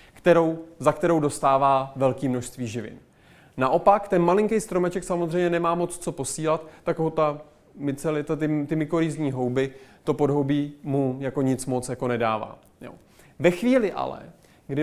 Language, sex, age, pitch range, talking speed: Czech, male, 30-49, 150-195 Hz, 150 wpm